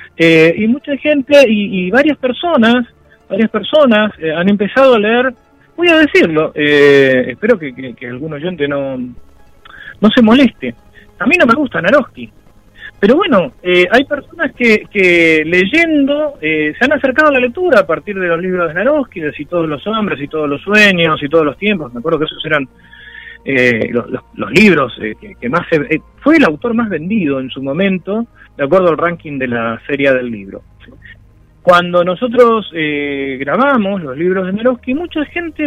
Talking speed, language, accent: 190 wpm, Spanish, Argentinian